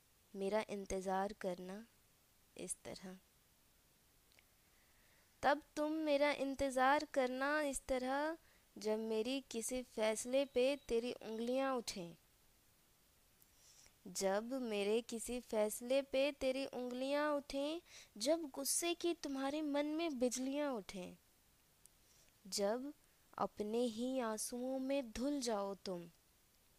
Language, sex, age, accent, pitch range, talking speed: Hindi, female, 20-39, native, 210-275 Hz, 100 wpm